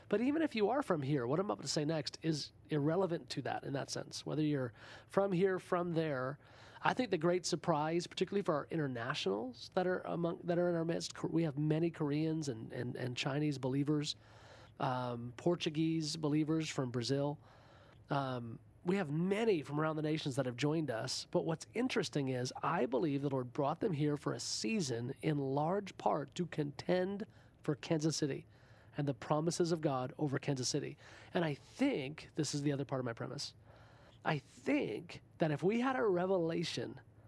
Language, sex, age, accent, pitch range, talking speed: English, male, 40-59, American, 130-170 Hz, 190 wpm